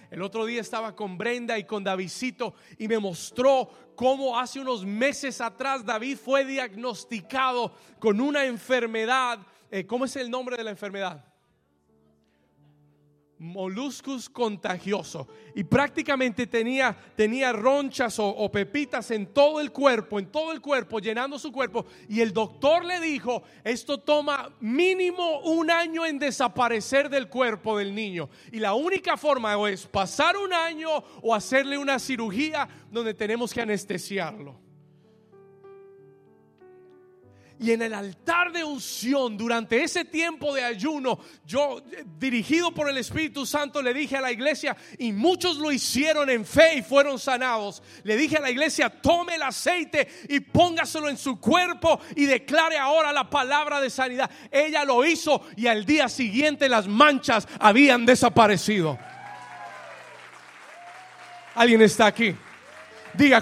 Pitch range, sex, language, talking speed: 215-285 Hz, male, Spanish, 140 wpm